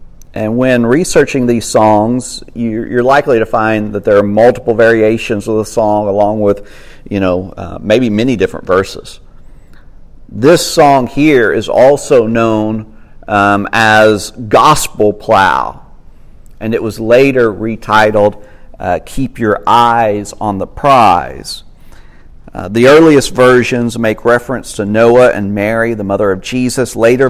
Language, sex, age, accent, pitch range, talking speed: English, male, 50-69, American, 105-130 Hz, 140 wpm